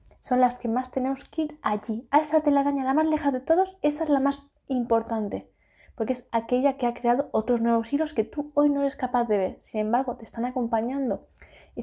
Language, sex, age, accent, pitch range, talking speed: Spanish, female, 20-39, Spanish, 225-270 Hz, 225 wpm